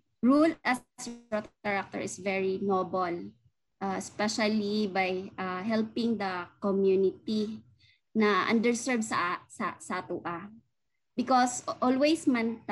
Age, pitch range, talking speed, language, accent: 20-39, 190-250 Hz, 110 wpm, Filipino, native